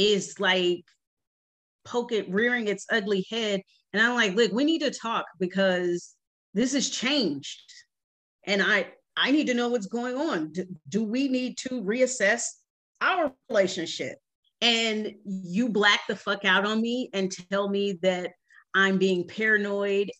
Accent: American